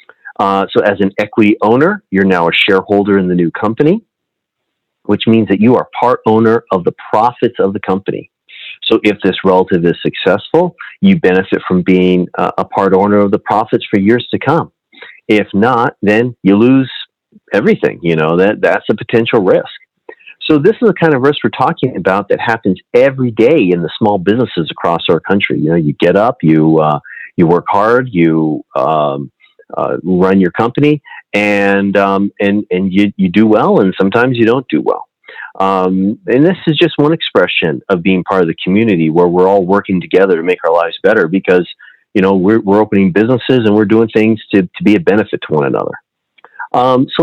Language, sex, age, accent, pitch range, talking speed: English, male, 40-59, American, 95-125 Hz, 200 wpm